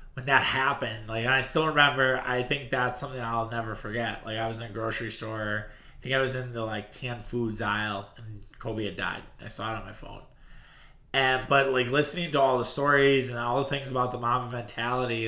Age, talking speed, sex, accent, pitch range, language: 20-39, 230 wpm, male, American, 110-130 Hz, English